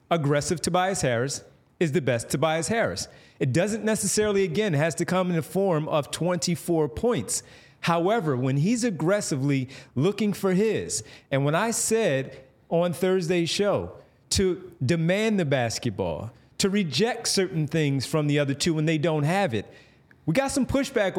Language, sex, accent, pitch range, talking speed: English, male, American, 155-215 Hz, 160 wpm